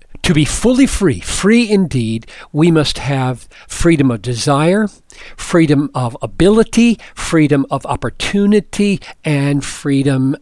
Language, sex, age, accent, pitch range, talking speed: English, male, 60-79, American, 125-160 Hz, 115 wpm